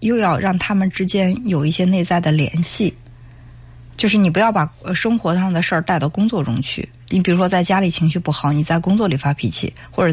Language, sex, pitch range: Chinese, female, 145-205 Hz